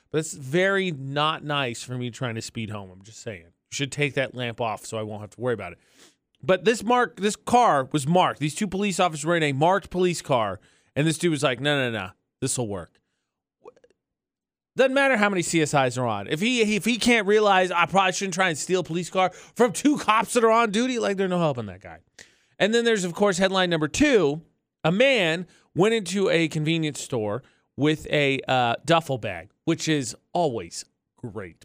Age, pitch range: 30-49, 125-185 Hz